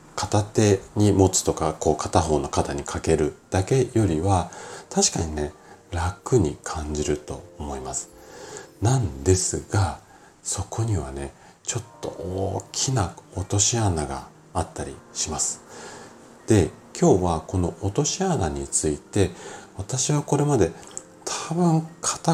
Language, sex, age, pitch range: Japanese, male, 40-59, 80-125 Hz